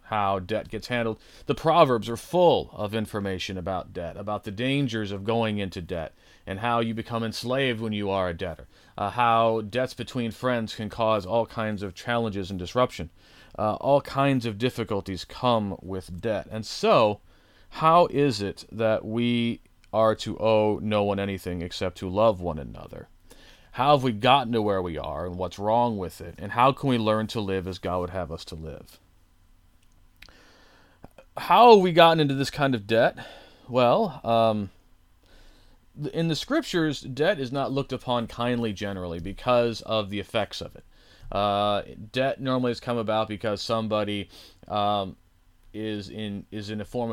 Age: 40-59